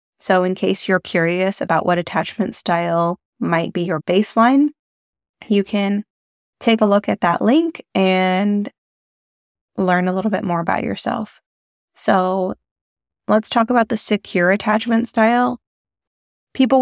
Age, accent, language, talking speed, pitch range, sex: 20-39, American, English, 135 wpm, 175-205 Hz, female